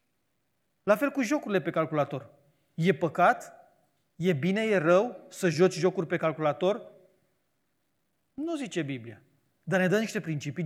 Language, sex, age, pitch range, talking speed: Romanian, male, 30-49, 160-210 Hz, 140 wpm